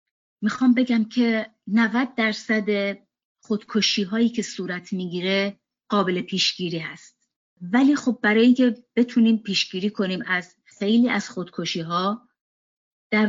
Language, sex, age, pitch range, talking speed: Persian, female, 30-49, 180-225 Hz, 115 wpm